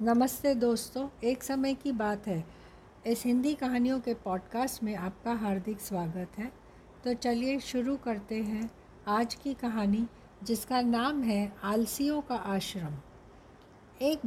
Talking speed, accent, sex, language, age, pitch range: 135 wpm, native, female, Hindi, 60-79, 200-255 Hz